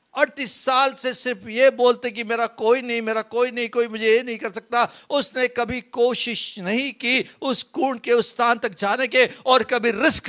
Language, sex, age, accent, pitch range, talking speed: Hindi, male, 50-69, native, 190-245 Hz, 205 wpm